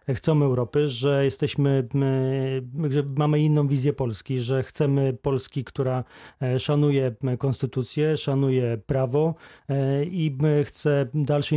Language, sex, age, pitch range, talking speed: Polish, male, 40-59, 130-150 Hz, 105 wpm